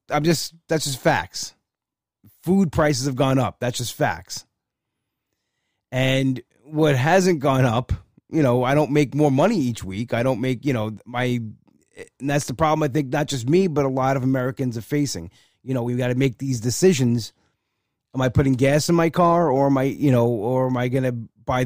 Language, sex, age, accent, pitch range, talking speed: English, male, 30-49, American, 115-140 Hz, 210 wpm